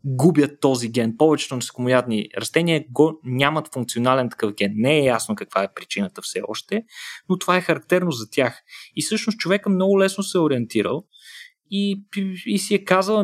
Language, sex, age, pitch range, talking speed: Bulgarian, male, 20-39, 125-195 Hz, 175 wpm